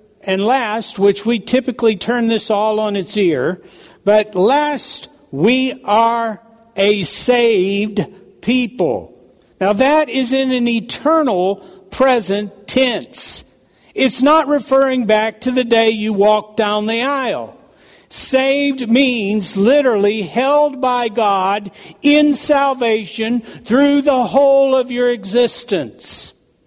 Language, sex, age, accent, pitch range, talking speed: English, male, 60-79, American, 210-260 Hz, 115 wpm